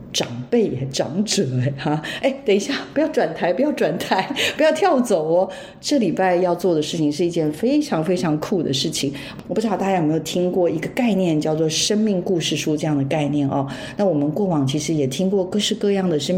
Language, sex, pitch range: Chinese, female, 155-210 Hz